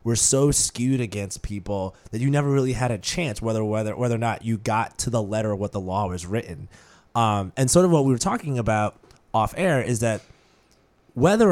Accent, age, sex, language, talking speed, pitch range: American, 20-39, male, English, 220 wpm, 105-130 Hz